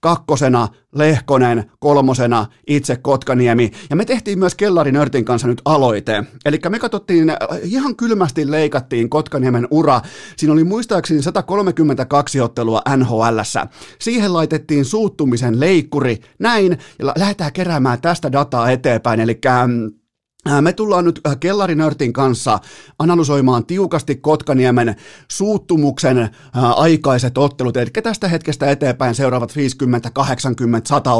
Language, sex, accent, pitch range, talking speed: Finnish, male, native, 120-155 Hz, 110 wpm